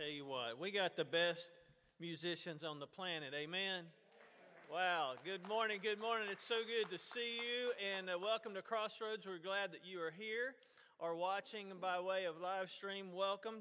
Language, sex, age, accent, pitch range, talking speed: English, male, 40-59, American, 170-210 Hz, 180 wpm